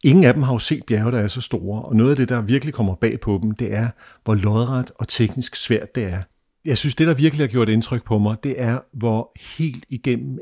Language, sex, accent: Danish, male, native